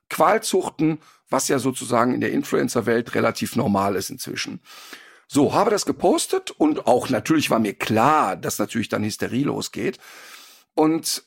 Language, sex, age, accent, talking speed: German, male, 50-69, German, 145 wpm